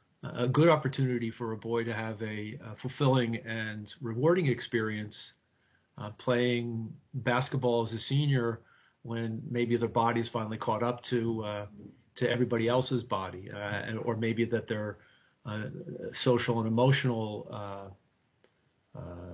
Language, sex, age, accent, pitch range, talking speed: English, male, 40-59, American, 110-135 Hz, 130 wpm